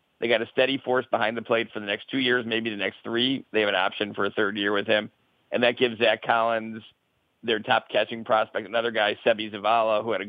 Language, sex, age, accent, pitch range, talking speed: English, male, 50-69, American, 105-125 Hz, 250 wpm